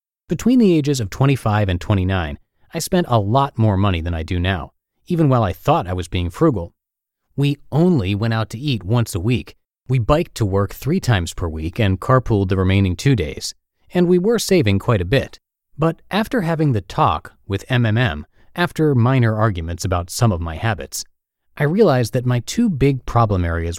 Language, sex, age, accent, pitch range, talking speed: English, male, 30-49, American, 95-145 Hz, 195 wpm